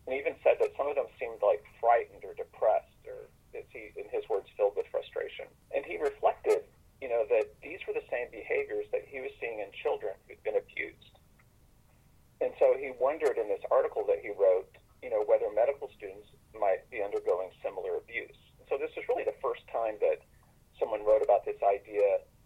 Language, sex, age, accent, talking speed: English, male, 40-59, American, 195 wpm